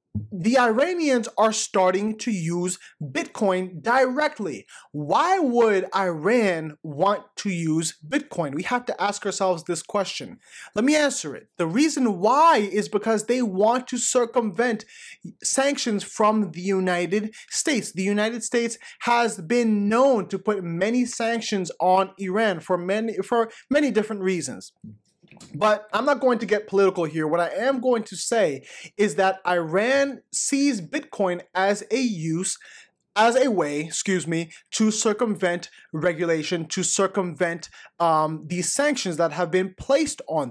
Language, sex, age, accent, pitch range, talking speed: English, male, 30-49, American, 180-240 Hz, 145 wpm